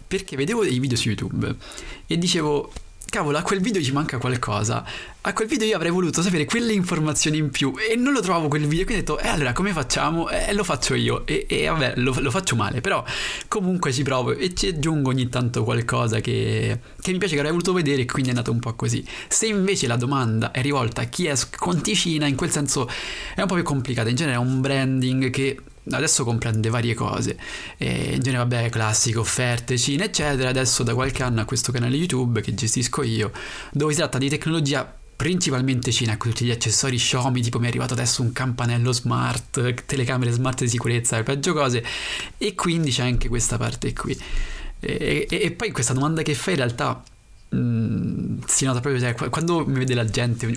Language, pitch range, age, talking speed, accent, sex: Italian, 120-150 Hz, 20-39, 205 wpm, native, male